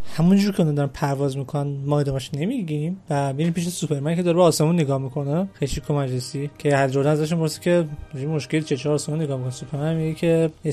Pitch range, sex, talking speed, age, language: 140-160 Hz, male, 185 wpm, 20-39, Persian